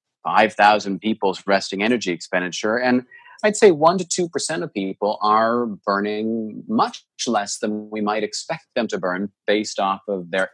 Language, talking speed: English, 165 wpm